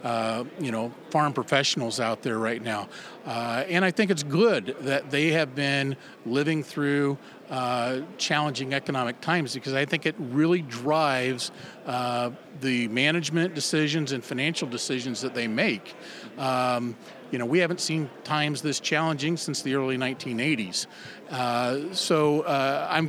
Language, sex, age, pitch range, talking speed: English, male, 40-59, 130-160 Hz, 150 wpm